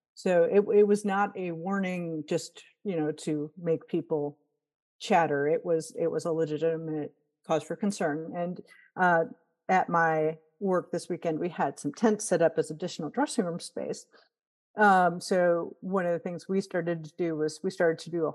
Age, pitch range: 50-69, 160-205 Hz